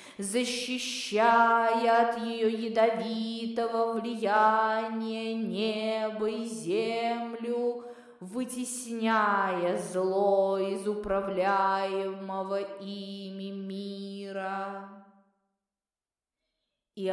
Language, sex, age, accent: Russian, female, 20-39, native